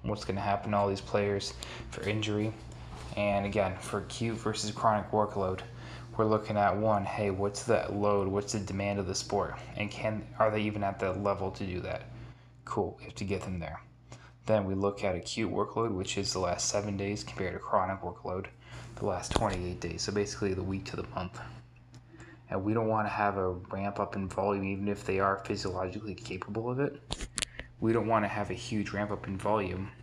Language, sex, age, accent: English, male, 20-39, American